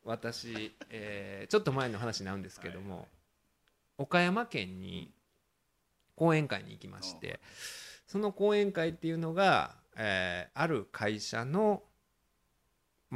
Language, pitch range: Japanese, 105-165 Hz